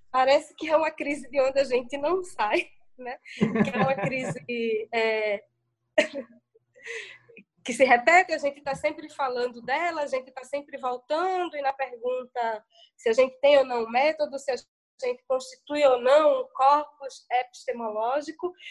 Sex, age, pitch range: female, 20-39, 245-295 Hz